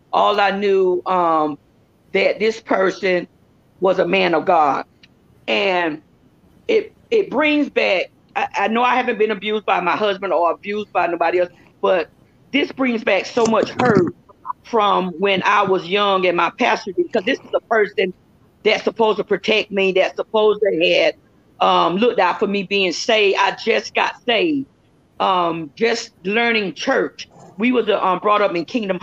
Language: English